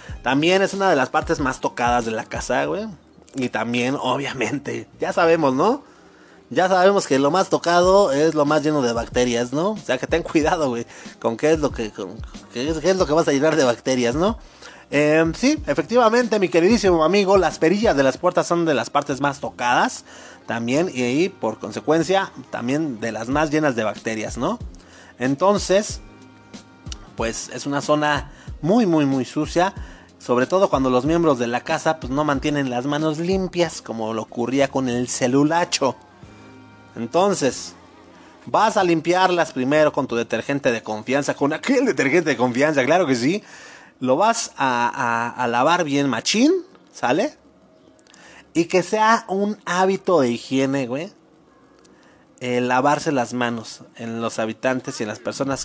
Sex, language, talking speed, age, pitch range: male, Spanish, 175 wpm, 30-49, 125-175 Hz